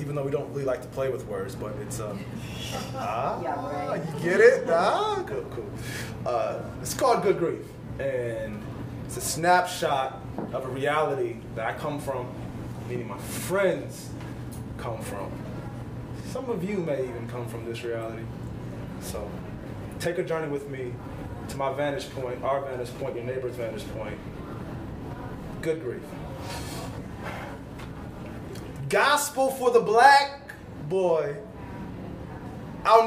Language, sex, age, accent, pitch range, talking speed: English, male, 20-39, American, 145-240 Hz, 135 wpm